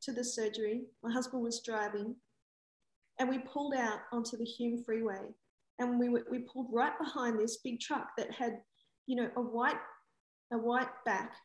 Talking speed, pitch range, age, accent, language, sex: 175 wpm, 215-245 Hz, 40-59, Australian, English, female